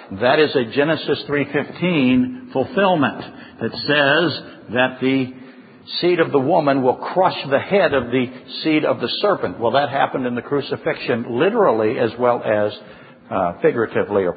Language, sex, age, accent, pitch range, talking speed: English, male, 60-79, American, 145-210 Hz, 155 wpm